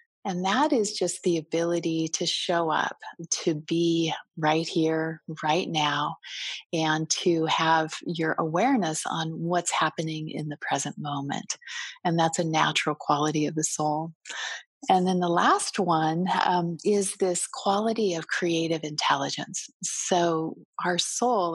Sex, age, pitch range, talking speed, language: female, 40-59, 155-180 Hz, 140 wpm, English